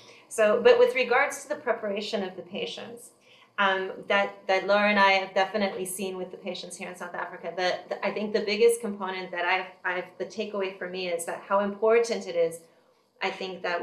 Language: English